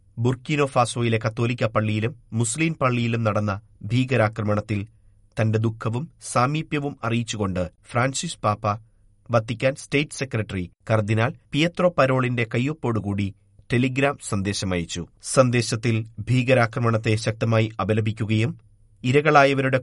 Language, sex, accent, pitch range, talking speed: Malayalam, male, native, 105-125 Hz, 90 wpm